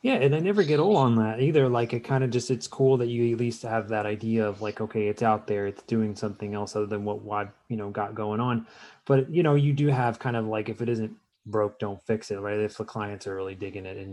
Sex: male